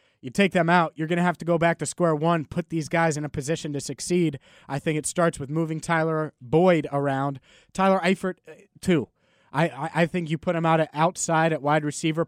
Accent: American